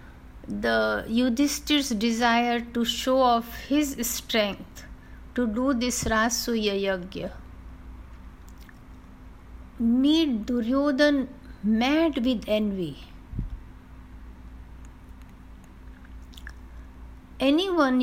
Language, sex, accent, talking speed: Hindi, female, native, 65 wpm